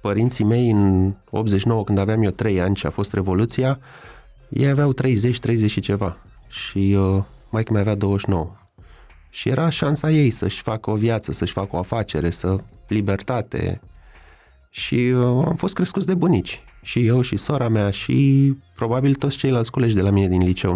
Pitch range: 95-135 Hz